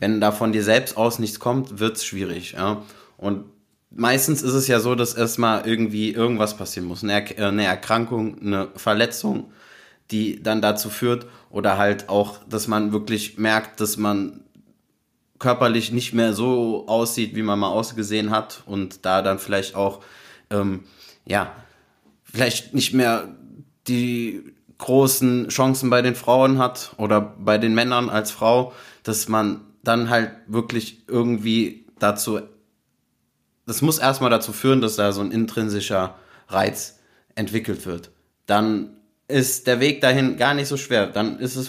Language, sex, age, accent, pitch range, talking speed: German, male, 20-39, German, 105-120 Hz, 155 wpm